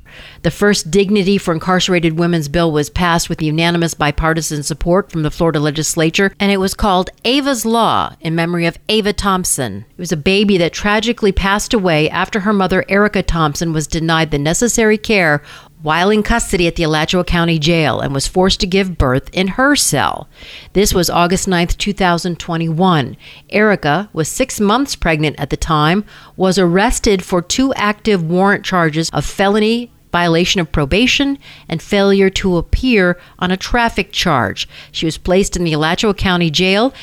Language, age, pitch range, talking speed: English, 50-69, 160-200 Hz, 170 wpm